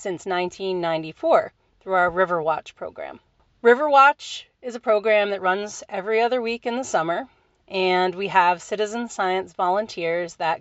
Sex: female